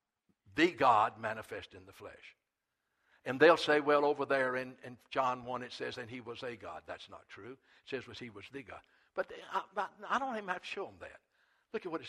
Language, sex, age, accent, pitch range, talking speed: English, male, 60-79, American, 145-245 Hz, 235 wpm